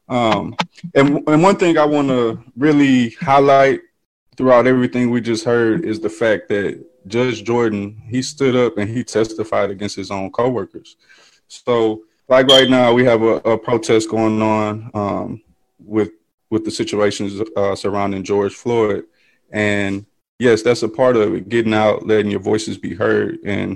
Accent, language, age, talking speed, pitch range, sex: American, English, 20-39, 165 wpm, 105-125 Hz, male